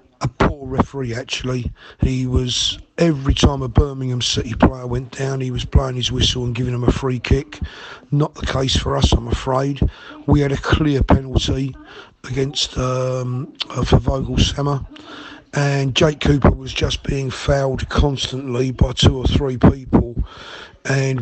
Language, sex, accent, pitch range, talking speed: English, male, British, 125-140 Hz, 160 wpm